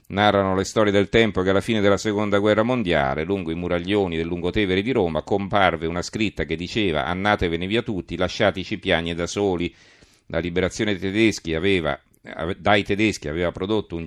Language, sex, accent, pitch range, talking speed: Italian, male, native, 85-105 Hz, 170 wpm